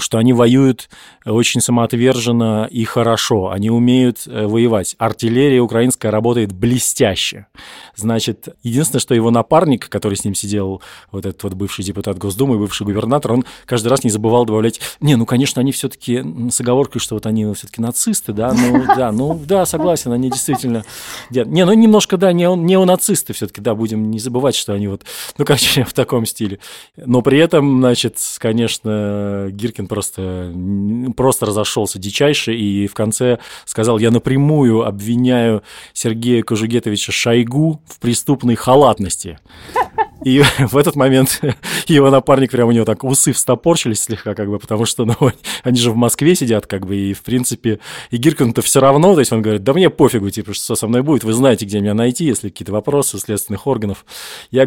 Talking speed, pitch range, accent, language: 170 wpm, 105-130 Hz, native, Russian